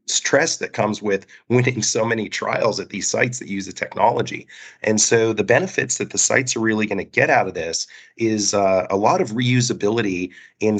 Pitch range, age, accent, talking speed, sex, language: 95-110 Hz, 30-49, American, 205 wpm, male, English